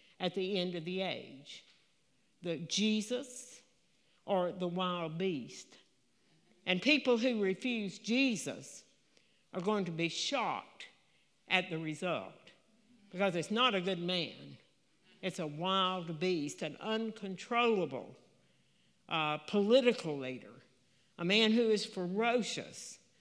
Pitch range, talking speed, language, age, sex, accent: 170-220 Hz, 115 wpm, English, 60-79, female, American